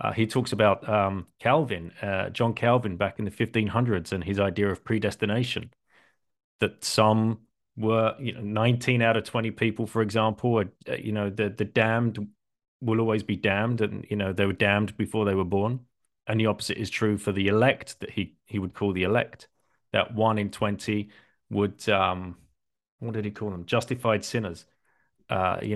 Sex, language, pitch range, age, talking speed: male, English, 100-115 Hz, 30-49, 190 wpm